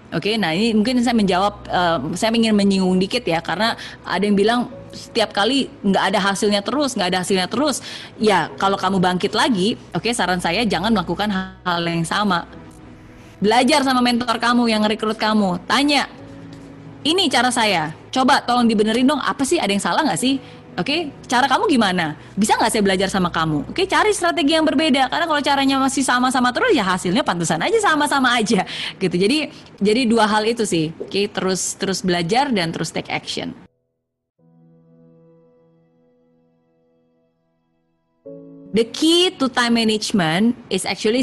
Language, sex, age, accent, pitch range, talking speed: Indonesian, female, 20-39, native, 180-245 Hz, 165 wpm